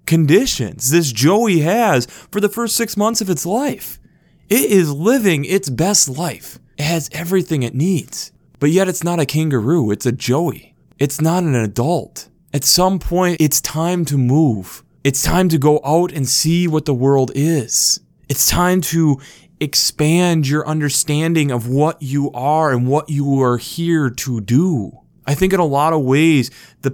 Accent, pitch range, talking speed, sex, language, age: American, 140-175 Hz, 175 wpm, male, English, 20-39